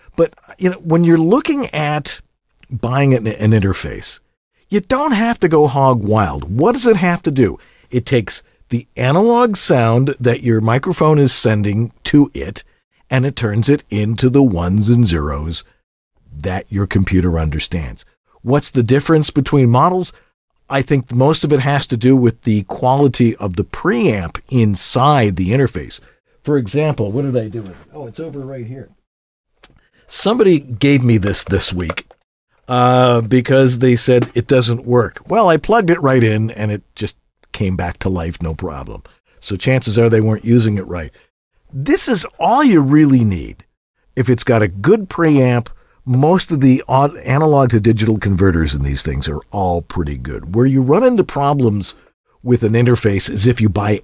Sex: male